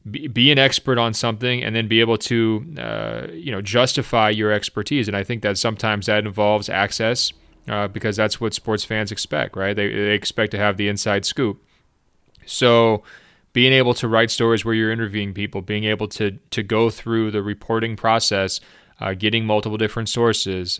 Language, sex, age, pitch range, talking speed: English, male, 20-39, 105-115 Hz, 185 wpm